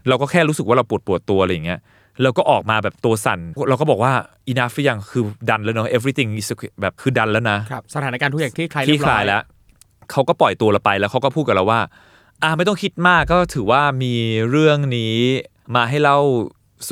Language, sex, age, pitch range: Thai, male, 20-39, 115-155 Hz